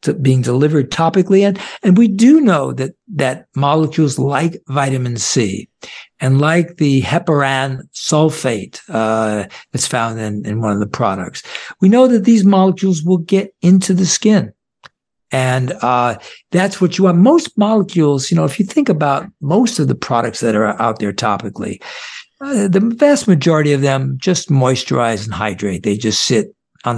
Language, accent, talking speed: English, American, 165 wpm